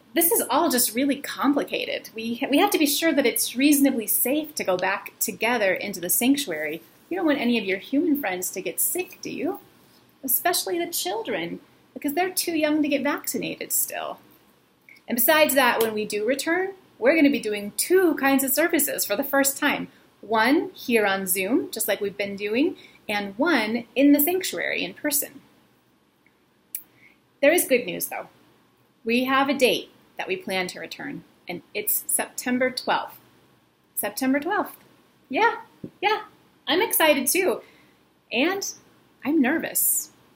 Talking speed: 165 wpm